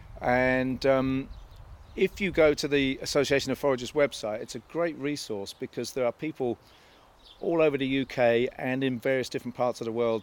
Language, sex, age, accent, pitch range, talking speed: English, male, 40-59, British, 110-135 Hz, 180 wpm